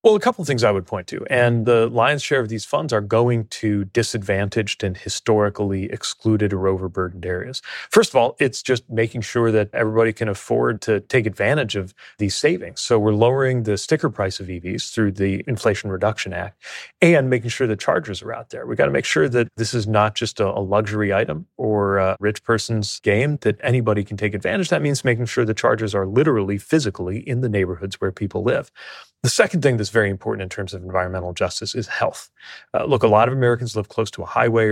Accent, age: American, 30-49